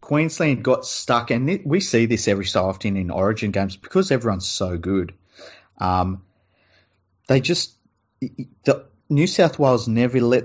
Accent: Australian